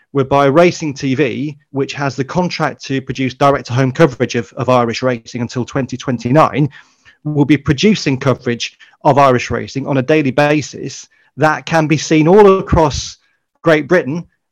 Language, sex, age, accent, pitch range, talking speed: English, male, 30-49, British, 125-150 Hz, 150 wpm